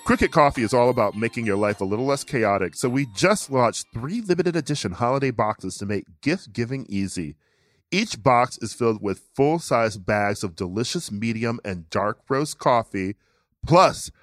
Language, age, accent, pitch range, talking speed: English, 40-59, American, 100-135 Hz, 165 wpm